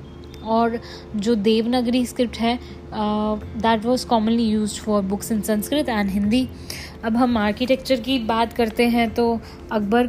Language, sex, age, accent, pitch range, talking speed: Hindi, female, 20-39, native, 220-255 Hz, 145 wpm